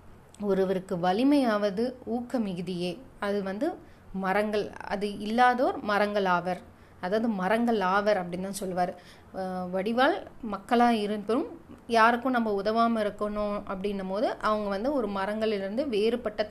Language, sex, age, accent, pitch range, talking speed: Tamil, female, 30-49, native, 195-245 Hz, 110 wpm